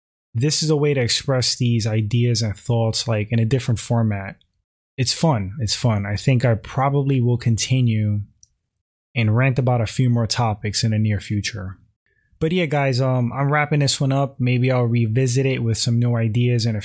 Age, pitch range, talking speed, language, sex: 20-39, 110-130 Hz, 195 wpm, English, male